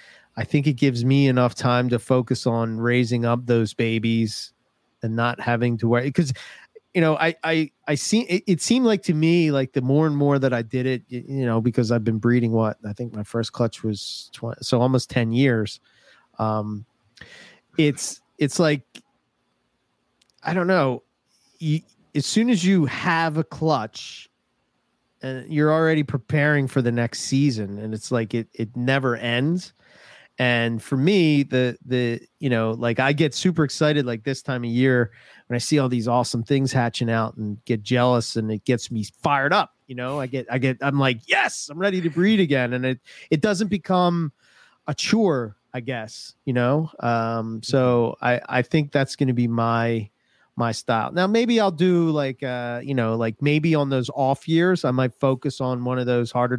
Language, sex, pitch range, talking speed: English, male, 120-150 Hz, 195 wpm